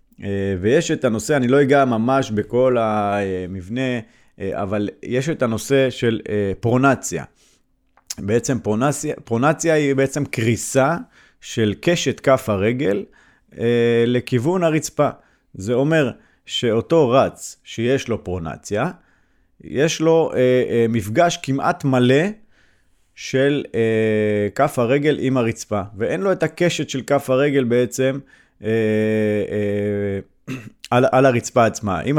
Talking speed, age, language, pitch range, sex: 110 wpm, 30-49, Hebrew, 110-140 Hz, male